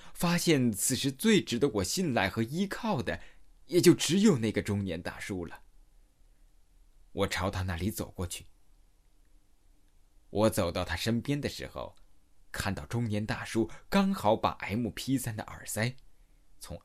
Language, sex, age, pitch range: Chinese, male, 20-39, 85-115 Hz